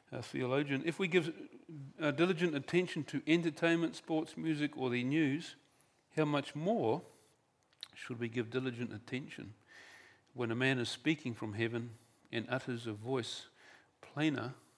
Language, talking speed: English, 140 wpm